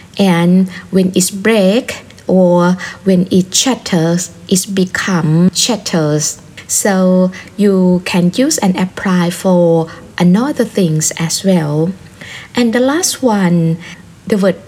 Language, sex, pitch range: Thai, female, 180-220 Hz